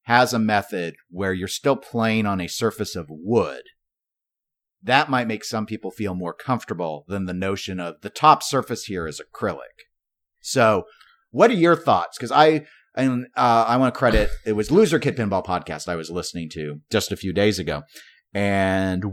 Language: English